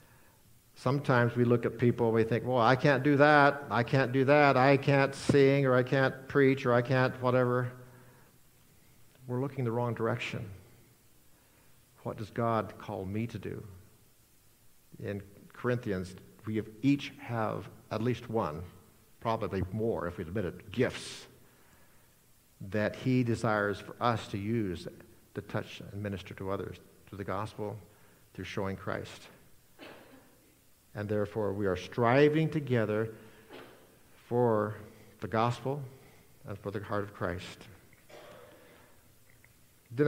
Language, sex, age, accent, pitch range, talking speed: English, male, 60-79, American, 105-130 Hz, 135 wpm